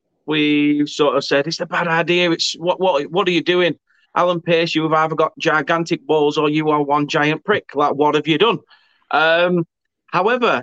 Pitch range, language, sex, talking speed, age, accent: 130-170 Hz, English, male, 200 wpm, 30-49, British